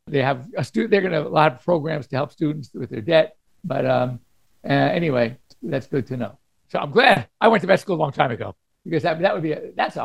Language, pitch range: English, 145-180 Hz